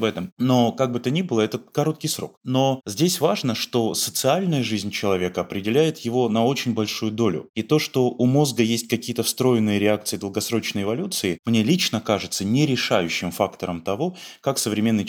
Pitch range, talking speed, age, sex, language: 100-120 Hz, 175 wpm, 20-39, male, Russian